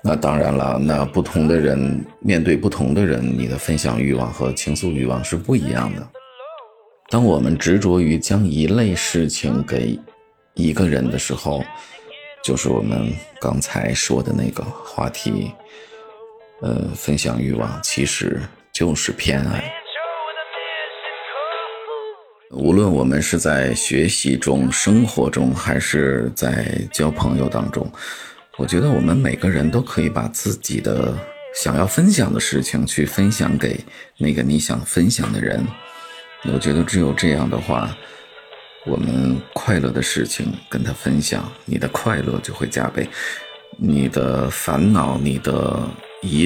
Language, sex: Chinese, male